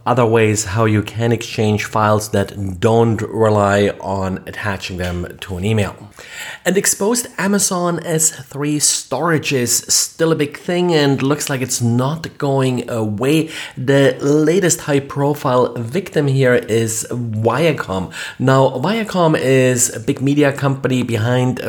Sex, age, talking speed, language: male, 30-49, 135 wpm, English